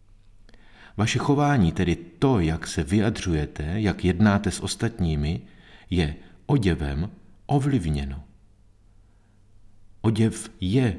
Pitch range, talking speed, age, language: 85-110 Hz, 85 wpm, 50-69, Czech